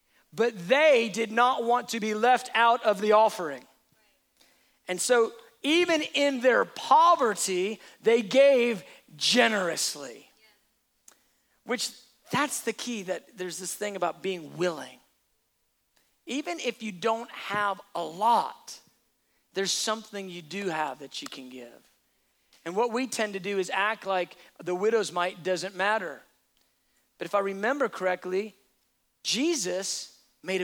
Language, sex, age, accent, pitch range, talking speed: English, male, 40-59, American, 195-255 Hz, 135 wpm